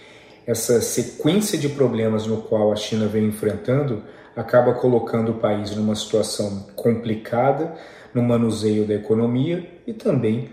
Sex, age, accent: male, 40-59, Brazilian